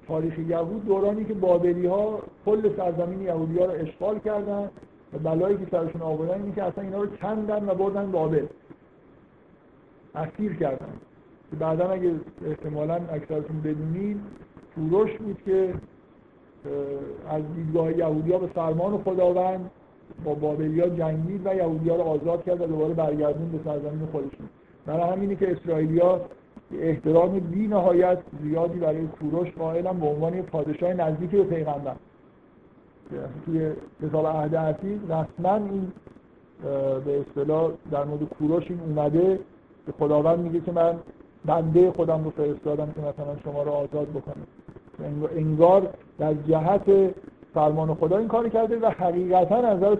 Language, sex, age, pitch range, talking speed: Persian, male, 50-69, 155-185 Hz, 140 wpm